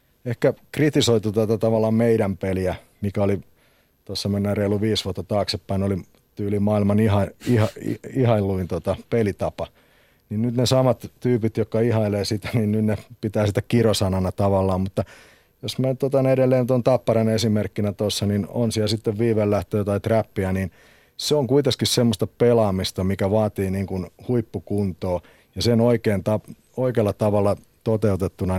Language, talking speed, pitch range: Finnish, 140 wpm, 95-115 Hz